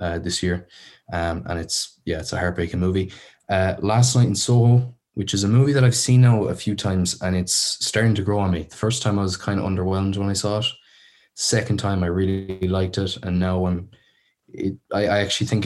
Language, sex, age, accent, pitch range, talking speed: English, male, 20-39, Irish, 85-105 Hz, 225 wpm